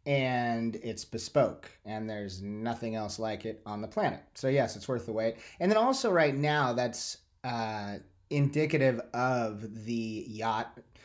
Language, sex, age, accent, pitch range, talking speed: English, male, 30-49, American, 110-135 Hz, 160 wpm